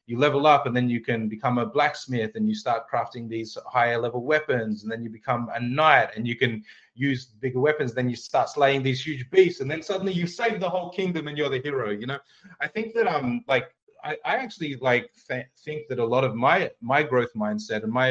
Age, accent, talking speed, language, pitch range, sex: 30-49, Australian, 240 wpm, English, 115-150 Hz, male